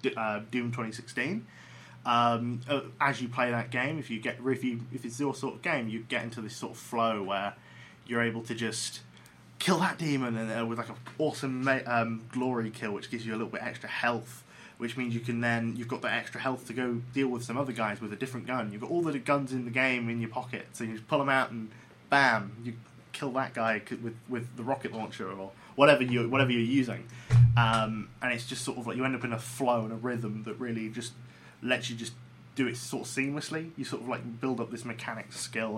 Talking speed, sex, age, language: 240 wpm, male, 20-39, English